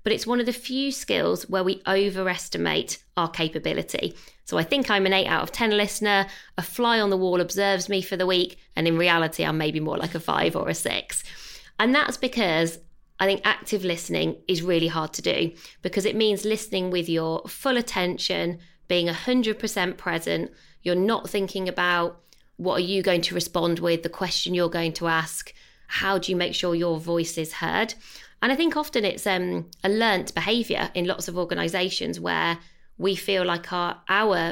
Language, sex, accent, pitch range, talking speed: English, female, British, 170-210 Hz, 195 wpm